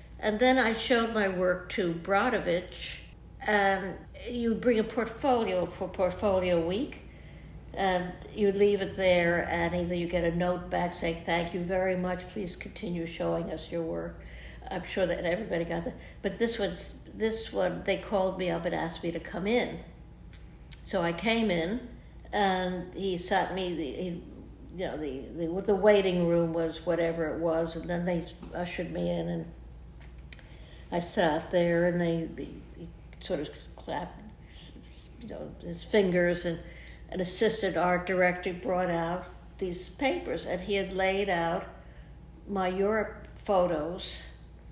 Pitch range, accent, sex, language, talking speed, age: 170-195 Hz, American, female, English, 160 wpm, 60-79